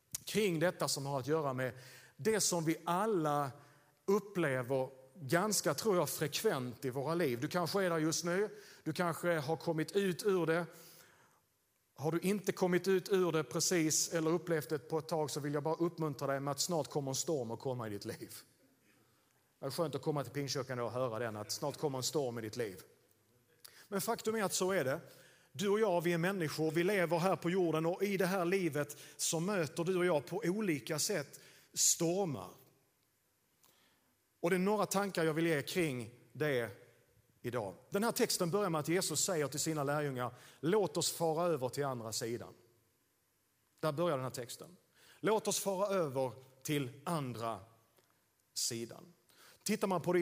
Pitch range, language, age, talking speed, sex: 135-175 Hz, Swedish, 40-59, 190 wpm, male